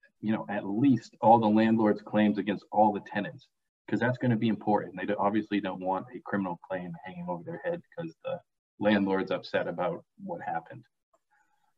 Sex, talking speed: male, 185 wpm